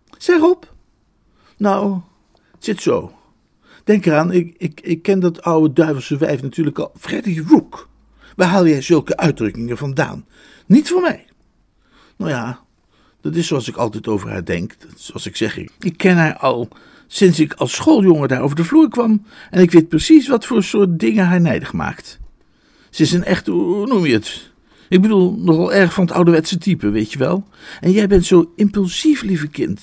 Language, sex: Dutch, male